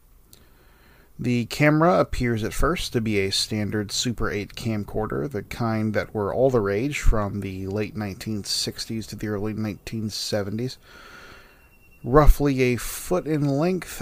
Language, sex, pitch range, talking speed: English, male, 105-130 Hz, 135 wpm